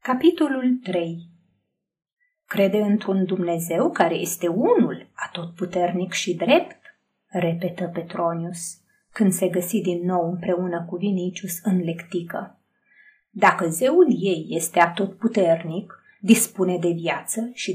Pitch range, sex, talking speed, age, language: 175-245 Hz, female, 110 wpm, 30-49, Romanian